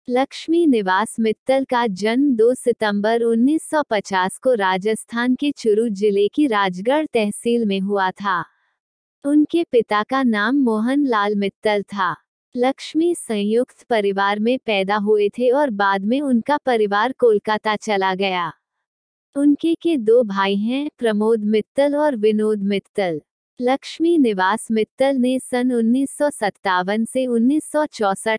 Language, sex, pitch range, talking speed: Hindi, female, 210-265 Hz, 125 wpm